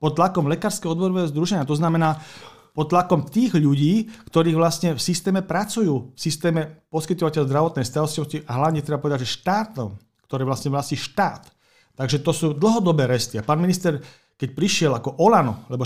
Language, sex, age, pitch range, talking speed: Slovak, male, 40-59, 135-165 Hz, 165 wpm